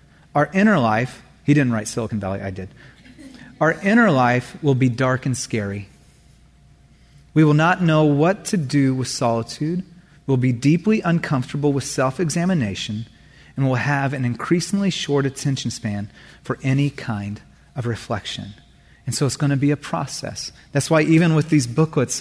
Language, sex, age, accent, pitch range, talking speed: English, male, 30-49, American, 135-170 Hz, 160 wpm